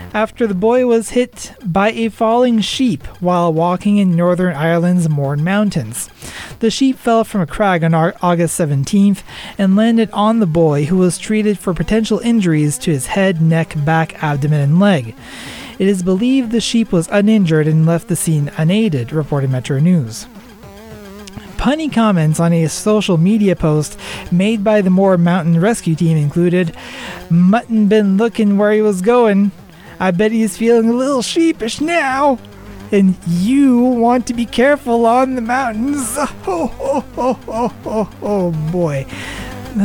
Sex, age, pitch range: male, 30-49, 165-225 Hz